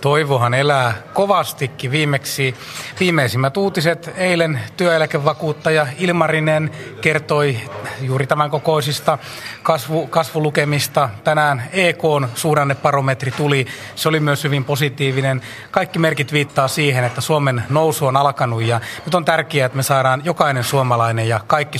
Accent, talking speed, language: native, 120 wpm, Finnish